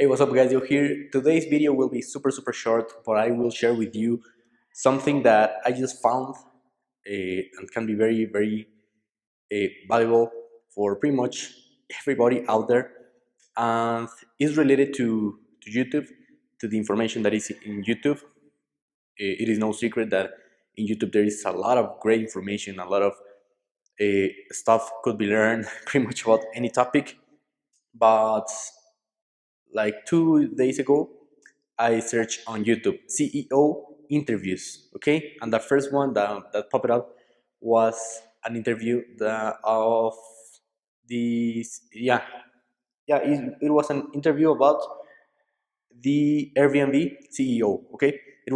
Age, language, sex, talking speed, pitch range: 20-39, English, male, 145 wpm, 110-140 Hz